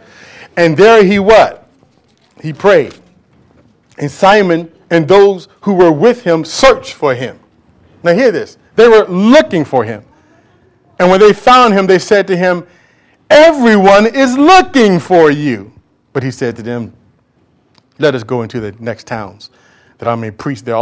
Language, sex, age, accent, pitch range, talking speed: English, male, 40-59, American, 120-180 Hz, 160 wpm